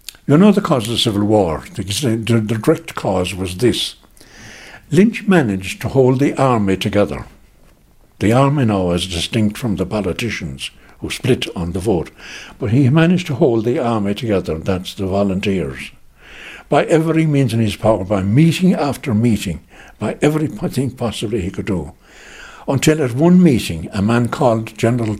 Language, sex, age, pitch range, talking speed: English, male, 60-79, 95-135 Hz, 160 wpm